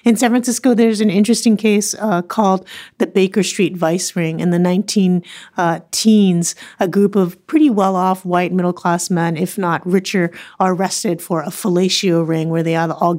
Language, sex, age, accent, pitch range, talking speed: English, female, 30-49, American, 175-215 Hz, 175 wpm